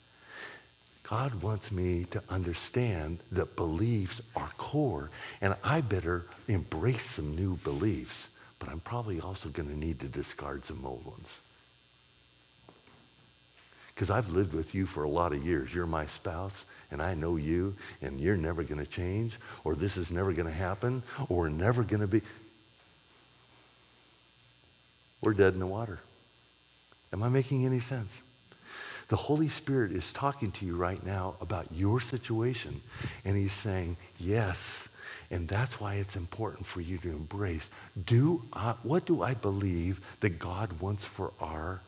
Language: English